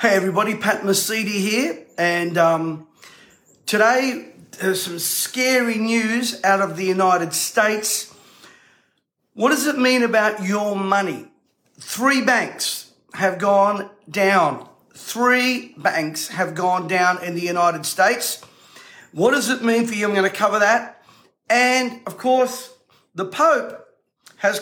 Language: English